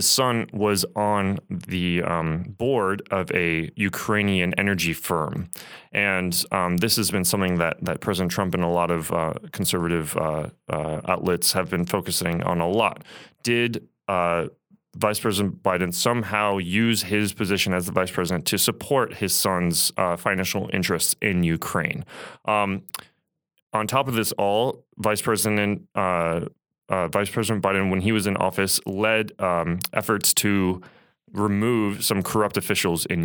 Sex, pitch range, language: male, 90-110 Hz, English